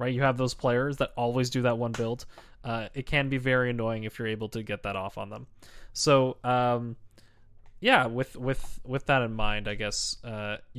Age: 20-39